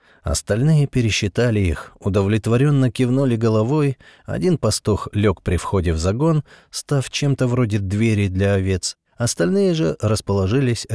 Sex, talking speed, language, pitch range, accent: male, 120 wpm, Russian, 90-125 Hz, native